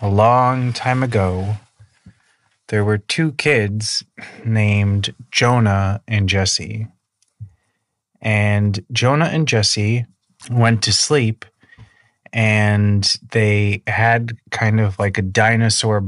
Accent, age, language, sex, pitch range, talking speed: American, 30-49, English, male, 100-115 Hz, 100 wpm